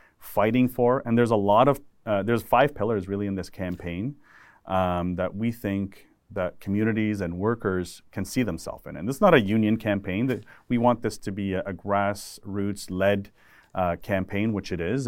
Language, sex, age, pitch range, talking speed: English, male, 30-49, 90-115 Hz, 195 wpm